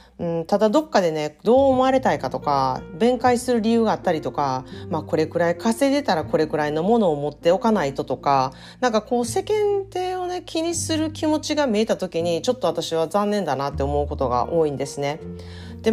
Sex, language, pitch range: female, Japanese, 150-210 Hz